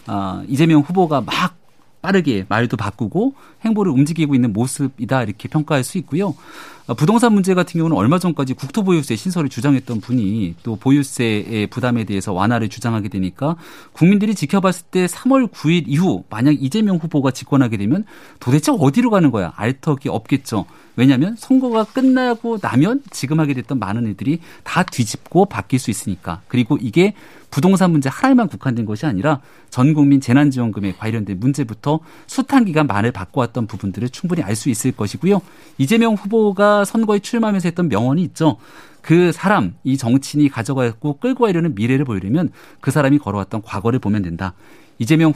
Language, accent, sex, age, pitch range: Korean, native, male, 40-59, 120-180 Hz